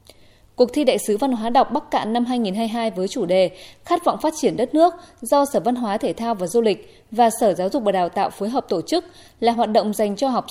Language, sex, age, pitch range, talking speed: Vietnamese, female, 20-39, 195-265 Hz, 265 wpm